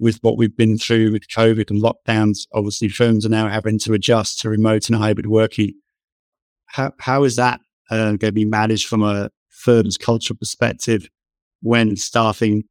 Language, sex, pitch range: English, male, 105-115 Hz